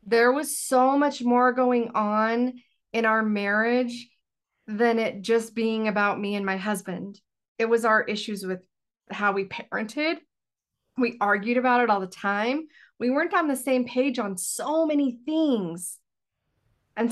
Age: 40-59